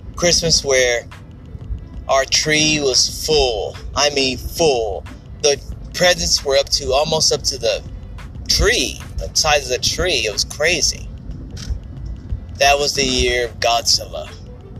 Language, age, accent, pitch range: English, 30-49, American, 100-145 Hz